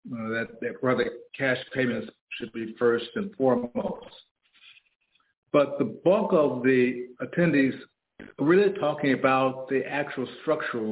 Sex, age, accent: male, 50-69, American